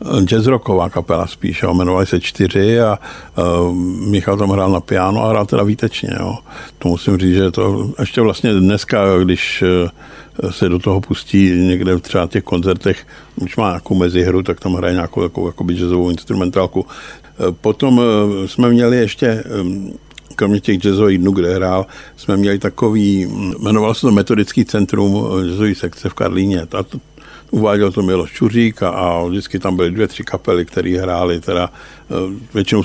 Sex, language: male, Czech